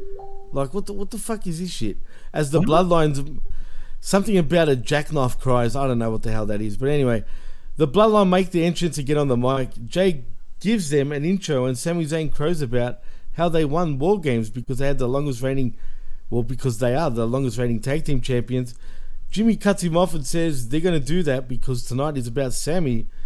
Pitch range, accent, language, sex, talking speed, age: 130-170 Hz, Australian, English, male, 215 wpm, 50-69